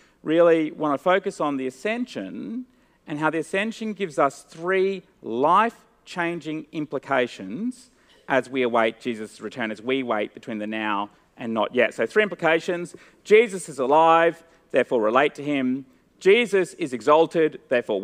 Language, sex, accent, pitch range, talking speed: English, male, Australian, 140-215 Hz, 145 wpm